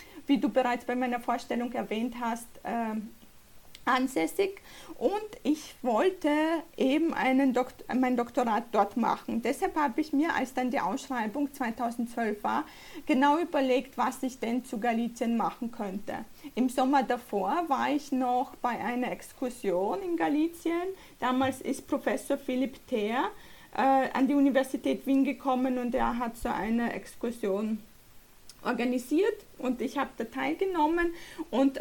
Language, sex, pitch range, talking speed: Slovak, female, 235-285 Hz, 140 wpm